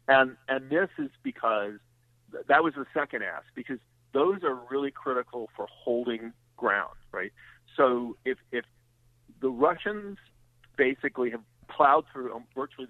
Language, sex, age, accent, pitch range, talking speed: English, male, 50-69, American, 120-135 Hz, 140 wpm